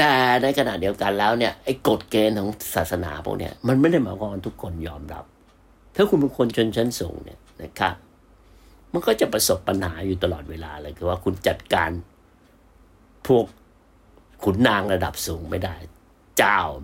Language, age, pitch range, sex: Thai, 60-79, 85-105 Hz, male